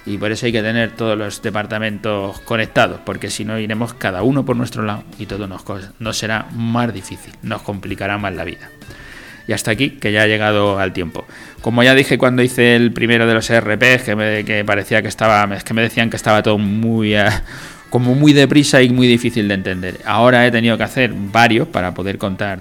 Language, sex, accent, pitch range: Spanish, male, Spanish, 100-115 Hz